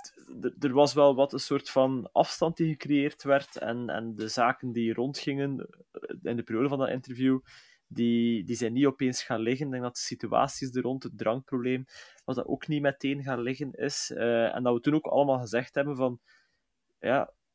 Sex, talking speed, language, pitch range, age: male, 195 wpm, Dutch, 115-140 Hz, 20-39